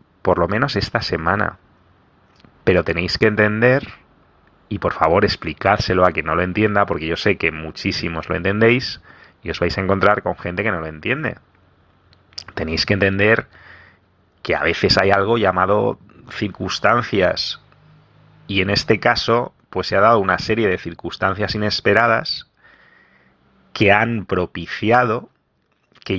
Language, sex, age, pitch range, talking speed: English, male, 30-49, 90-105 Hz, 145 wpm